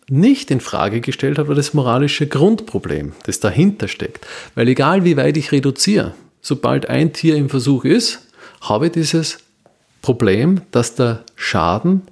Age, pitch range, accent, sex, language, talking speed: 40-59, 115-155 Hz, German, male, German, 155 wpm